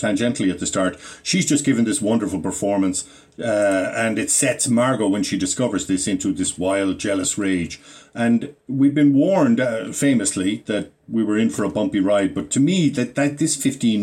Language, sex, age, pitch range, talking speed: English, male, 50-69, 105-140 Hz, 195 wpm